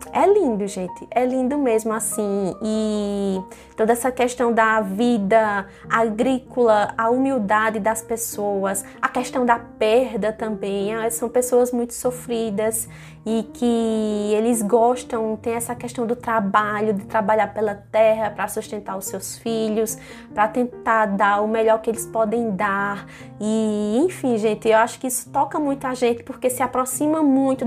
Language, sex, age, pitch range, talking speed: Portuguese, female, 20-39, 215-250 Hz, 150 wpm